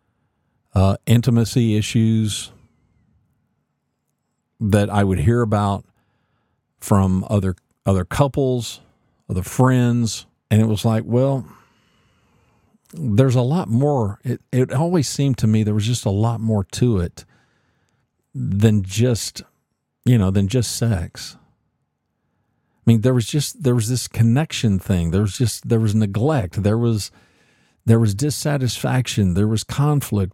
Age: 50-69